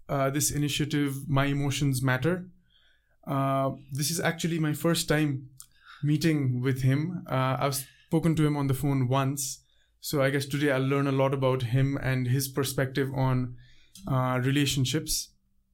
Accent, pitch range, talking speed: Indian, 135-160 Hz, 155 wpm